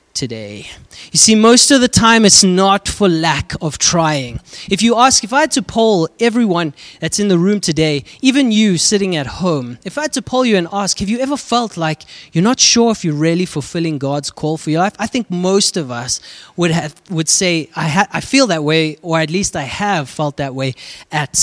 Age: 20-39